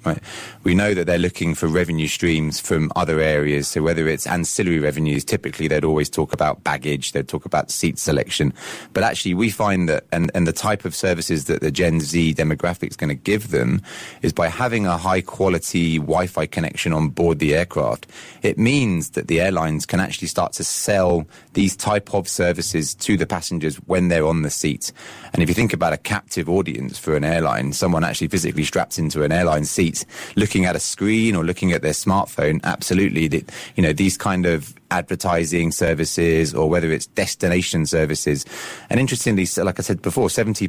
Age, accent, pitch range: 20-39, British, 80-95 Hz